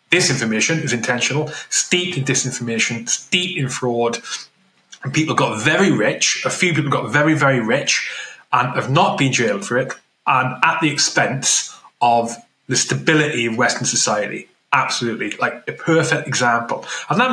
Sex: male